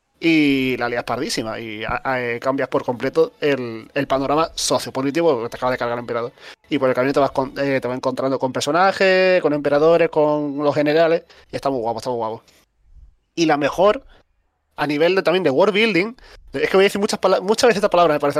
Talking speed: 220 wpm